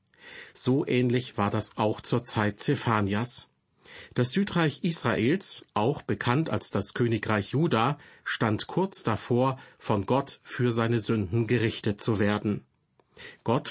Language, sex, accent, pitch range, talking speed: German, male, German, 110-140 Hz, 125 wpm